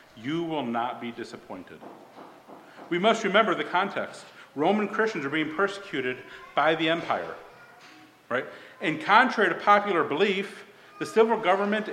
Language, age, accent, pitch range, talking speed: English, 50-69, American, 130-200 Hz, 135 wpm